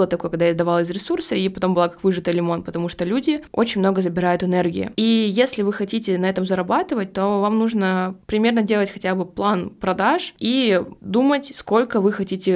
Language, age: Russian, 20-39